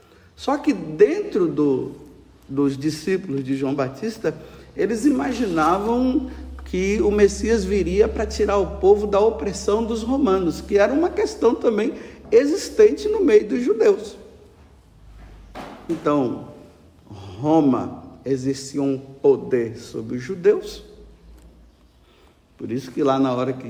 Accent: Brazilian